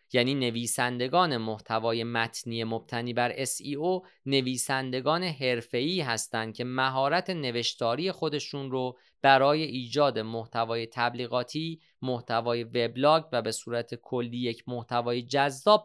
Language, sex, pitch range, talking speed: Persian, male, 115-150 Hz, 105 wpm